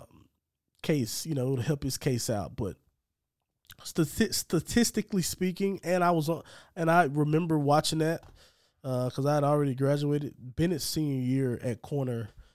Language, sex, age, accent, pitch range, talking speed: English, male, 20-39, American, 125-165 Hz, 155 wpm